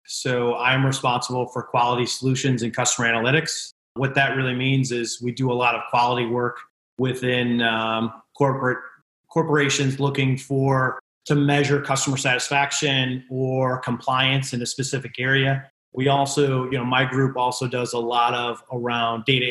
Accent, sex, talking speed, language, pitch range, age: American, male, 155 wpm, English, 120-135 Hz, 30-49